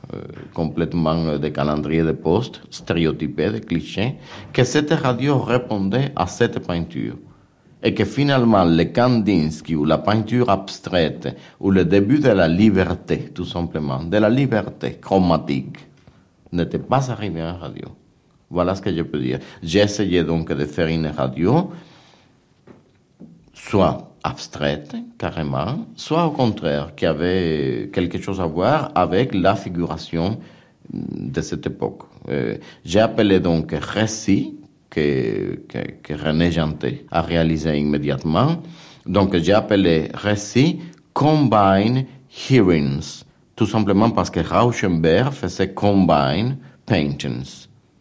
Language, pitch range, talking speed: French, 80-115 Hz, 125 wpm